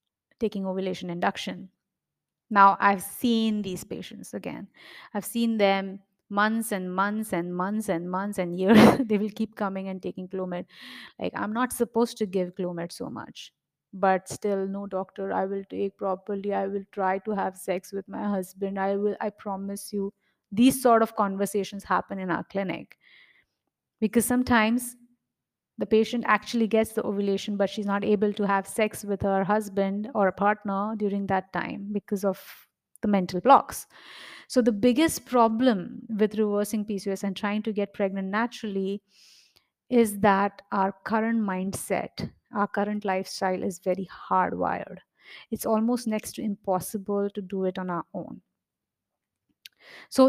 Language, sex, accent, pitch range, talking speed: English, female, Indian, 195-220 Hz, 155 wpm